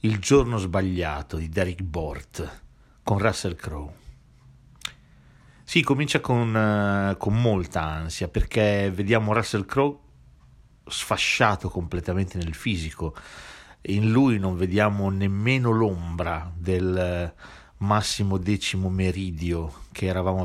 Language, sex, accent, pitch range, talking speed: Italian, male, native, 90-110 Hz, 105 wpm